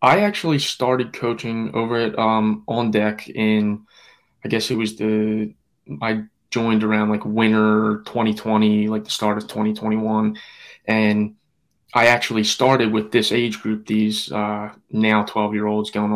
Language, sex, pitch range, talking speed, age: English, male, 105-110 Hz, 150 wpm, 20-39